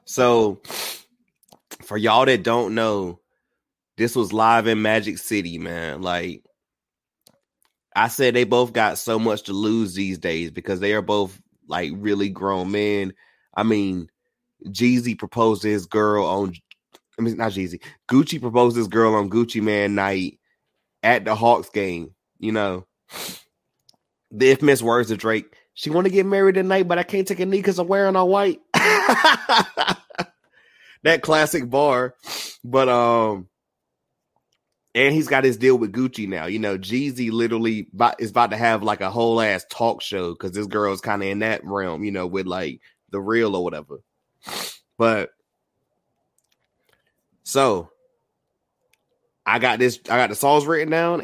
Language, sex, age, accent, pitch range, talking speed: English, male, 30-49, American, 100-130 Hz, 155 wpm